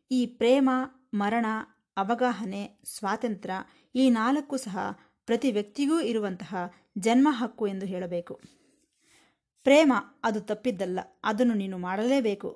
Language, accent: Kannada, native